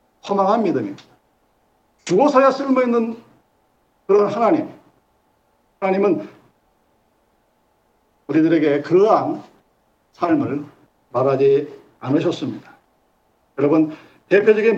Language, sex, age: Korean, male, 50-69